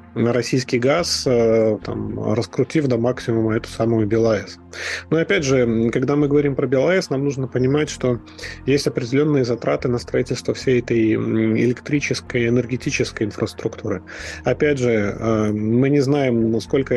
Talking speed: 125 wpm